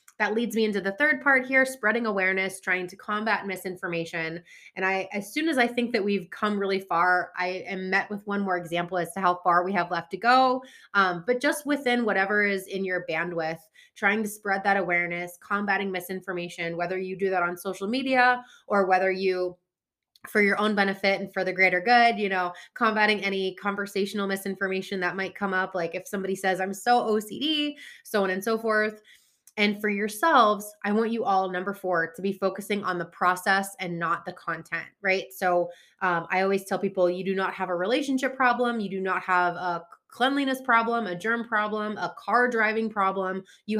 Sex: female